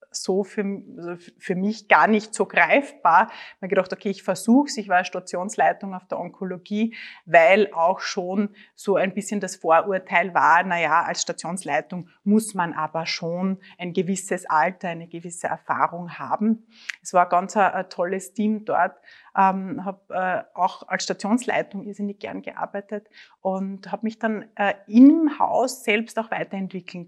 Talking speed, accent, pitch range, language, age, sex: 155 wpm, Austrian, 180-215 Hz, German, 30-49, female